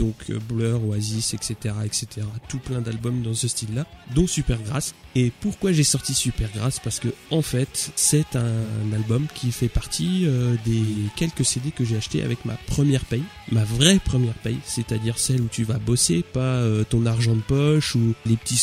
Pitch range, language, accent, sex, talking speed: 115-135 Hz, French, French, male, 185 wpm